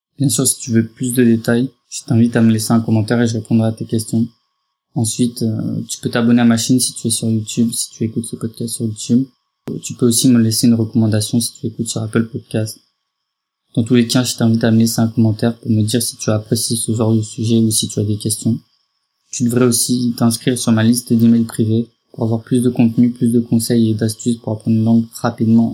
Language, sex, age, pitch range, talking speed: French, male, 20-39, 115-120 Hz, 245 wpm